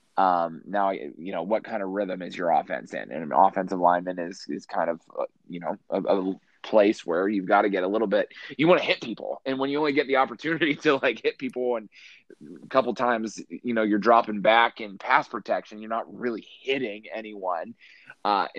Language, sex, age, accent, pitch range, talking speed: English, male, 20-39, American, 100-135 Hz, 220 wpm